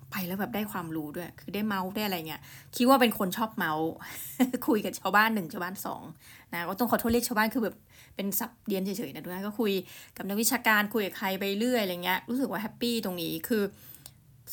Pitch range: 180-240 Hz